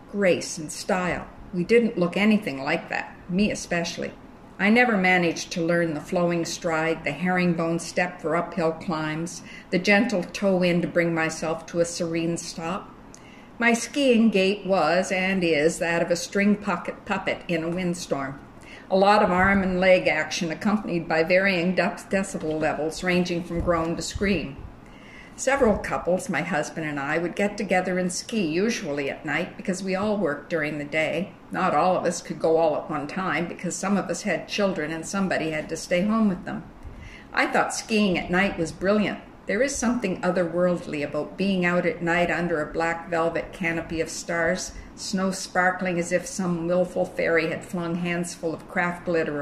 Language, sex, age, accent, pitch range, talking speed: English, female, 60-79, American, 165-190 Hz, 180 wpm